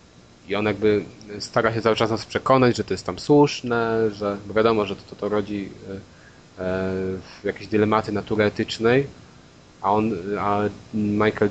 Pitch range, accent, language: 100-115 Hz, native, Polish